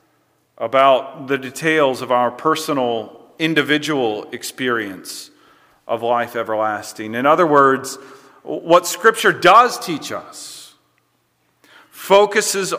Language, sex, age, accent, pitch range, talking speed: English, male, 40-59, American, 105-160 Hz, 95 wpm